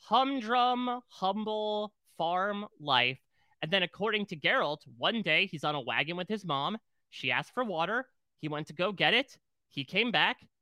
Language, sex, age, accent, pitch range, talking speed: English, male, 20-39, American, 125-175 Hz, 175 wpm